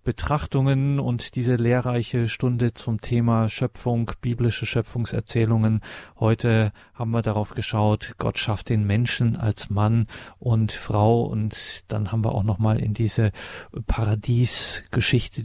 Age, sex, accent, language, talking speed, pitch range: 40-59, male, German, German, 125 wpm, 105-120 Hz